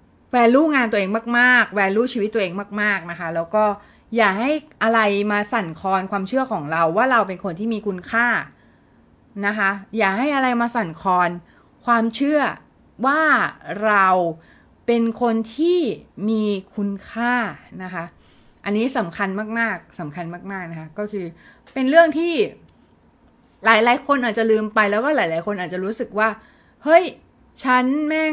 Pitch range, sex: 200-260 Hz, female